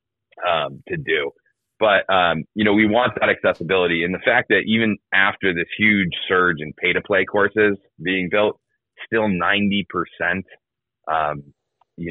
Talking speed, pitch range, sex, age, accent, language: 155 wpm, 85-105 Hz, male, 30-49, American, English